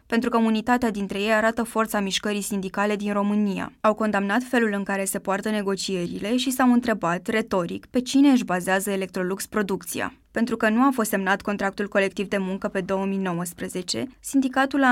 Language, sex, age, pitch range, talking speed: Romanian, female, 20-39, 195-235 Hz, 175 wpm